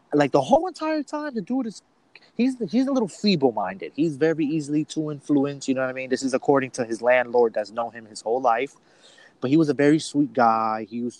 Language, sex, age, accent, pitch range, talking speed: English, male, 20-39, American, 130-180 Hz, 240 wpm